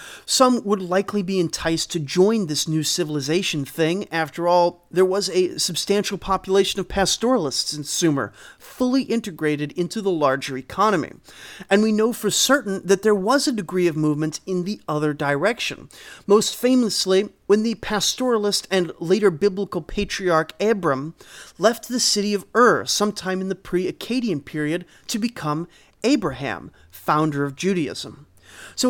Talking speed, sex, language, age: 145 wpm, male, English, 30-49